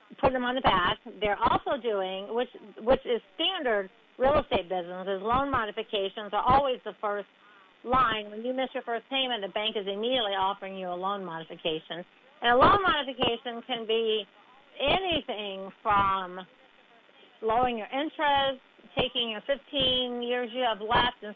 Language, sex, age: English, female, 50-69